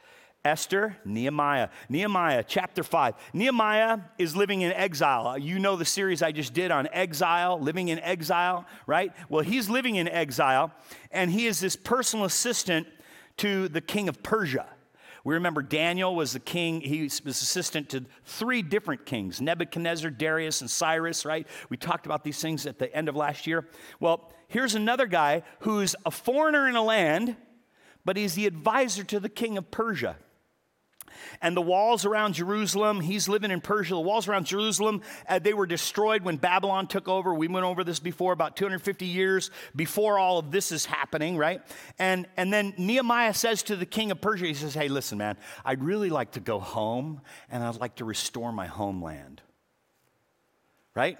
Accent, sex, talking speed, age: American, male, 180 wpm, 50-69